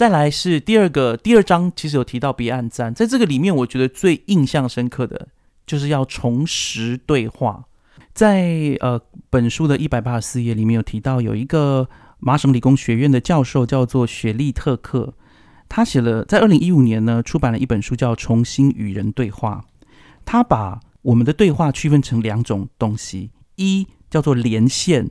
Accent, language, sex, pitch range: native, Chinese, male, 120-160 Hz